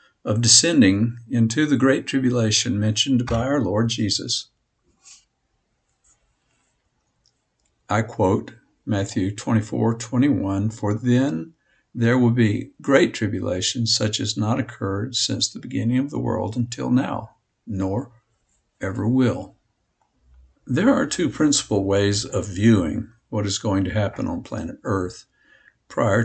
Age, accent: 60-79, American